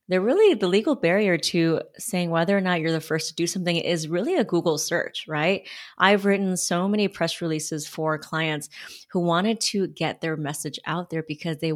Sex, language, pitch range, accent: female, English, 155-180 Hz, American